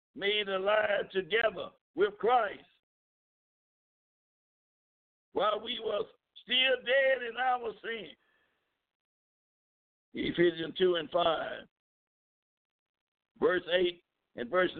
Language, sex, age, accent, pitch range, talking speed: English, male, 60-79, American, 190-275 Hz, 85 wpm